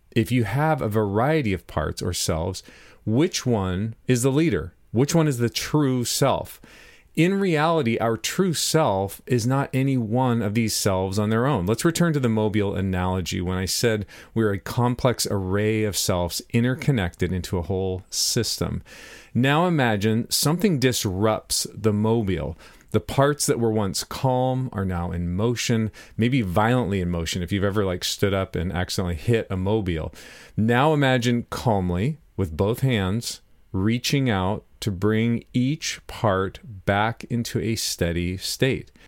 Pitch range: 95-125 Hz